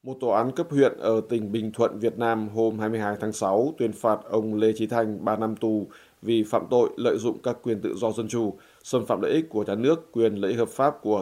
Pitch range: 105-115 Hz